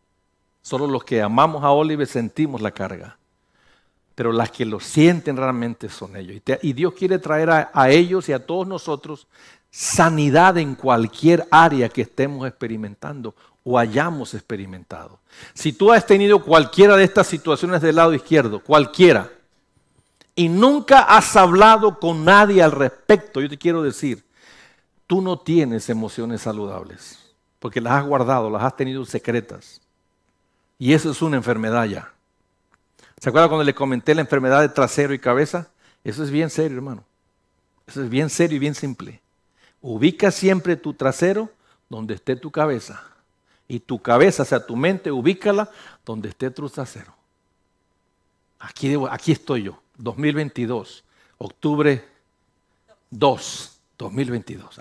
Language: English